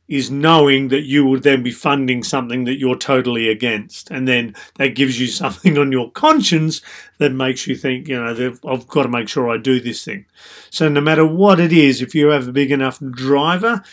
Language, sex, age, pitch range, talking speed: English, male, 40-59, 130-155 Hz, 220 wpm